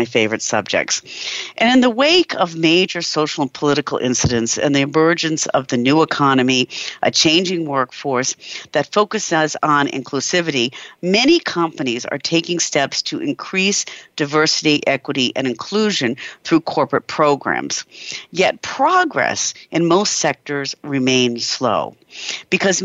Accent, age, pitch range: American, 50-69, 135-190 Hz